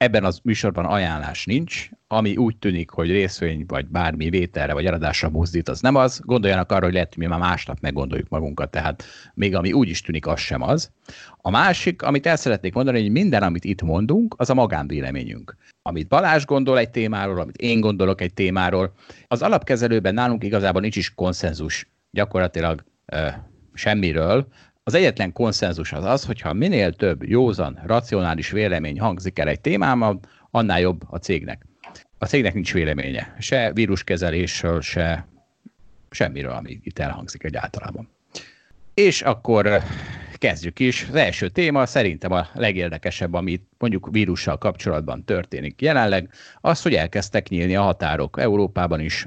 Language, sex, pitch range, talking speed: Hungarian, male, 85-115 Hz, 155 wpm